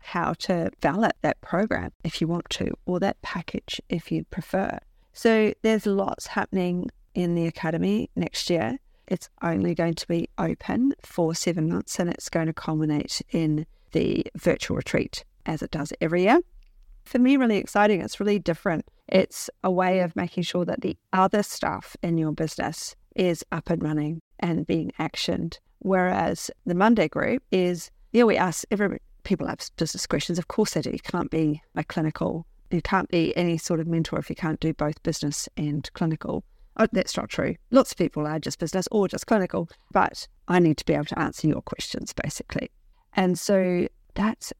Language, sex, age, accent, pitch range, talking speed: English, female, 40-59, Australian, 160-205 Hz, 185 wpm